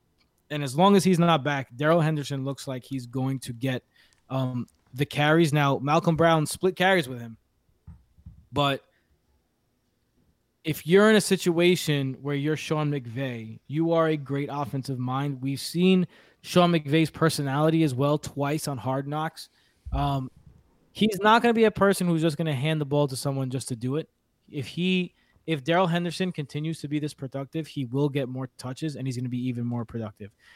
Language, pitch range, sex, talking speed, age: English, 130-160 Hz, male, 190 wpm, 20-39